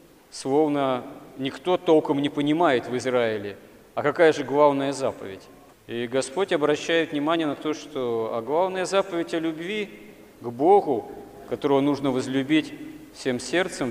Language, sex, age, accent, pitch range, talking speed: Russian, male, 40-59, native, 130-160 Hz, 130 wpm